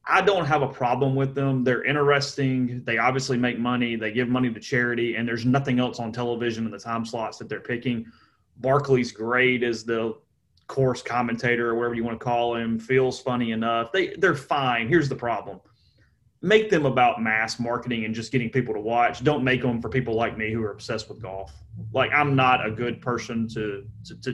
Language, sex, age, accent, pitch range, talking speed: English, male, 30-49, American, 115-145 Hz, 205 wpm